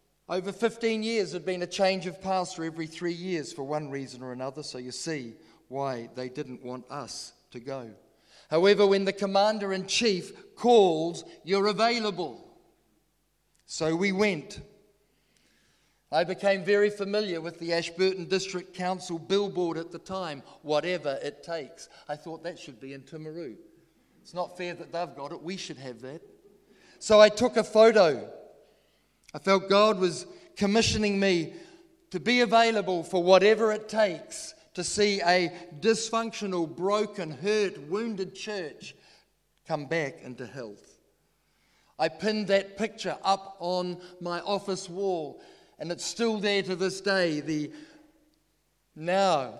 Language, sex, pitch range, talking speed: English, male, 155-200 Hz, 145 wpm